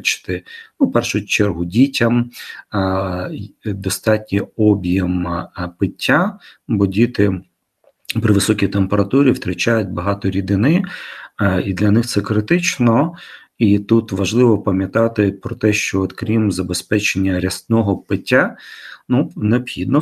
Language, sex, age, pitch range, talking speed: Ukrainian, male, 40-59, 95-120 Hz, 100 wpm